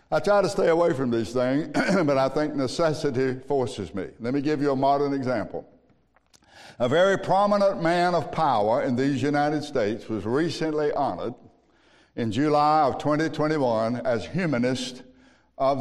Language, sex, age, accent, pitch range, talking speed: English, male, 60-79, American, 135-170 Hz, 155 wpm